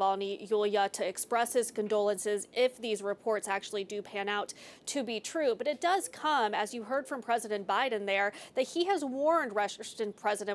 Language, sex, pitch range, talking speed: English, female, 205-240 Hz, 180 wpm